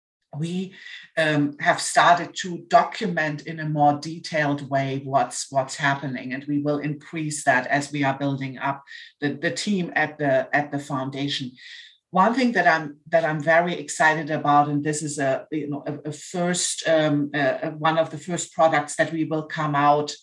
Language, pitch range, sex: English, 145-165 Hz, female